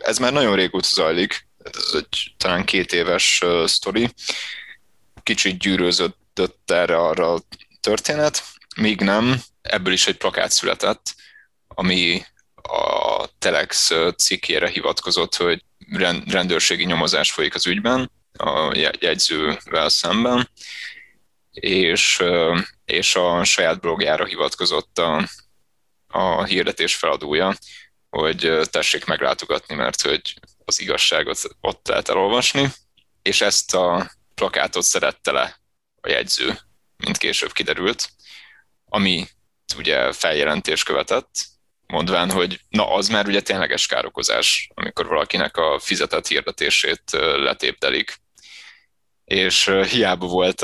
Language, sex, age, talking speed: Hungarian, male, 20-39, 105 wpm